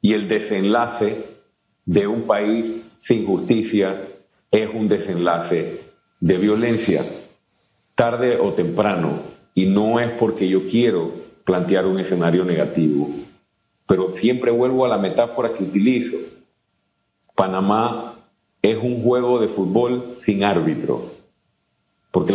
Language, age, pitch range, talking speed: Spanish, 50-69, 95-120 Hz, 115 wpm